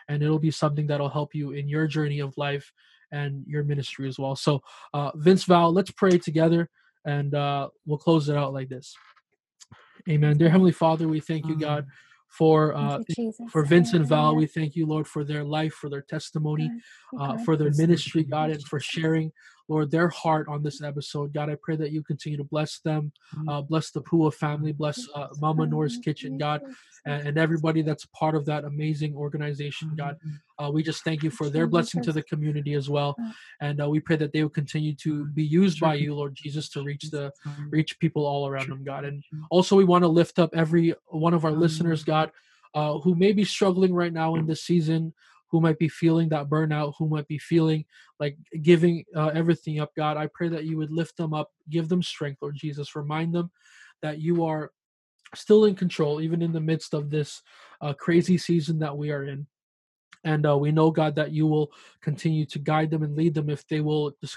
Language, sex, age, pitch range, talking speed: English, male, 20-39, 145-165 Hz, 215 wpm